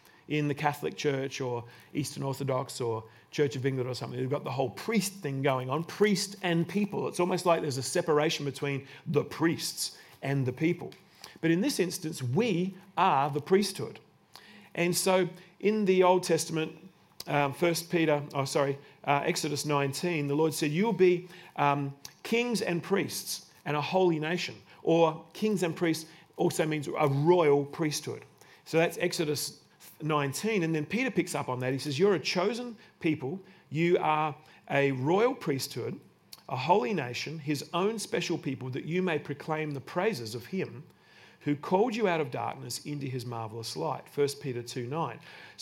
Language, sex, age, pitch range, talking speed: English, male, 40-59, 145-180 Hz, 170 wpm